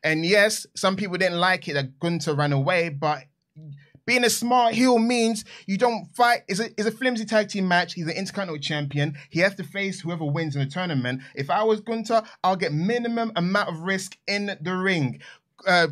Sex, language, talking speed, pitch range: male, English, 205 wpm, 145-200 Hz